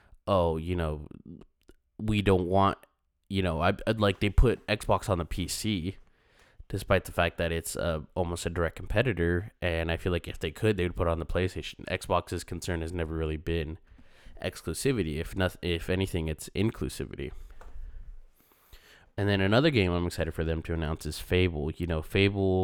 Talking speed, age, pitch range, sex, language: 185 wpm, 20-39, 80-95 Hz, male, English